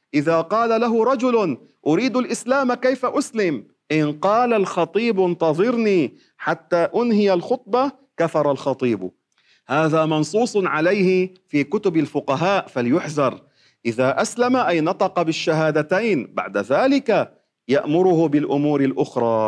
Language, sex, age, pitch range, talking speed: Arabic, male, 40-59, 150-220 Hz, 105 wpm